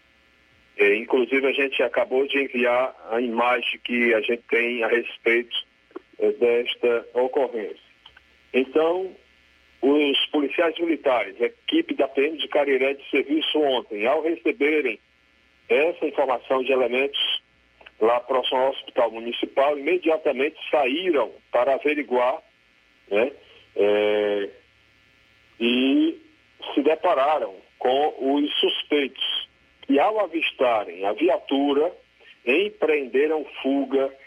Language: Portuguese